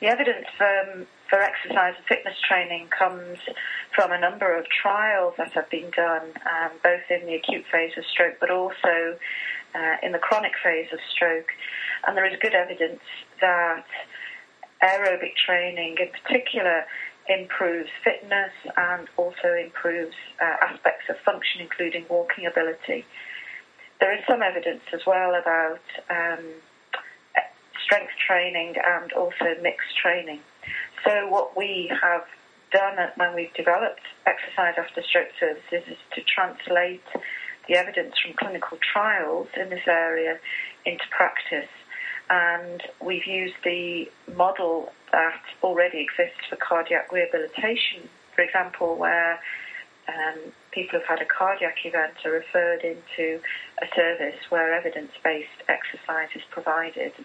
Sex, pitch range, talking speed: female, 165-185 Hz, 135 wpm